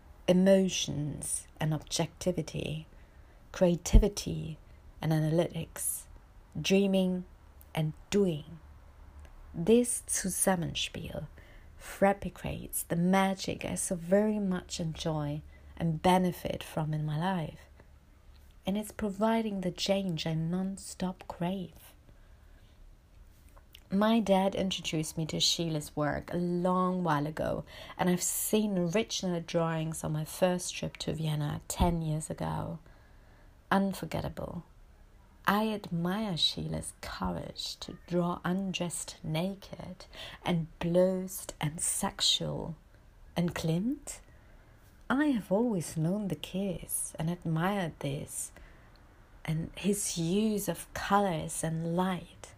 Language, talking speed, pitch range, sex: English, 105 wpm, 155-190 Hz, female